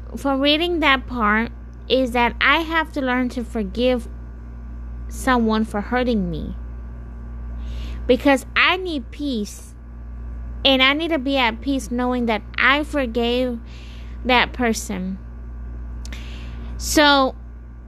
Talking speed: 115 wpm